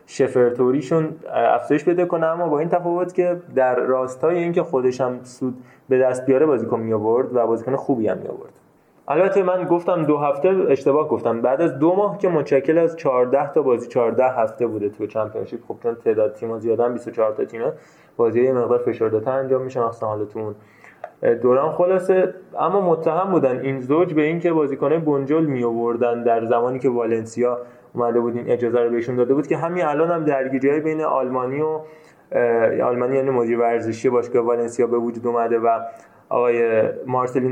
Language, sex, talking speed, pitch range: Persian, male, 170 wpm, 120-150 Hz